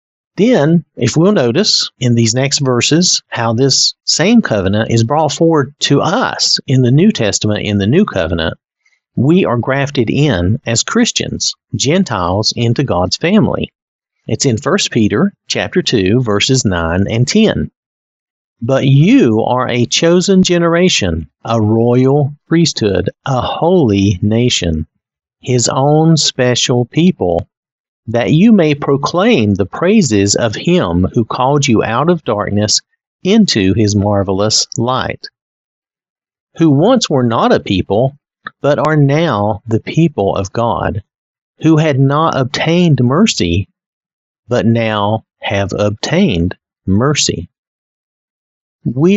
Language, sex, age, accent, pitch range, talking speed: English, male, 50-69, American, 105-160 Hz, 125 wpm